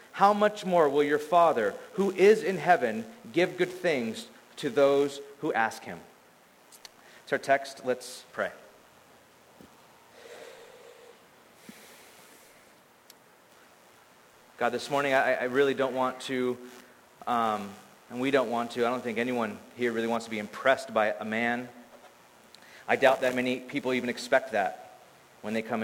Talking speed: 145 wpm